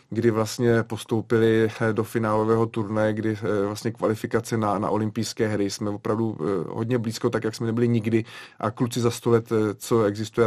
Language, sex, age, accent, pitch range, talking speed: Czech, male, 30-49, native, 115-125 Hz, 165 wpm